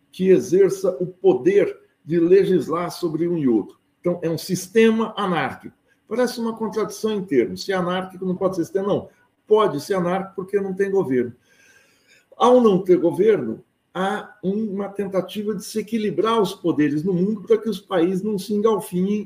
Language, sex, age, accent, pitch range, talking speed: Portuguese, male, 60-79, Brazilian, 165-220 Hz, 175 wpm